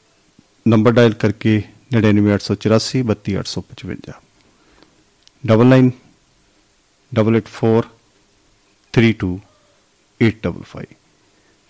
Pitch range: 100-125 Hz